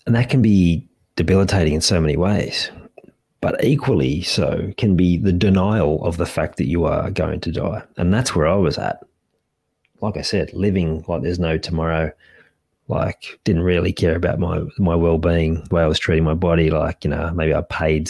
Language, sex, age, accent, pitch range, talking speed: English, male, 30-49, Australian, 80-90 Hz, 200 wpm